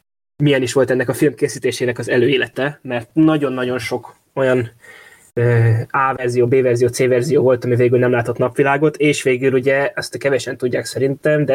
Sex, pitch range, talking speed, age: male, 125-145 Hz, 175 wpm, 20-39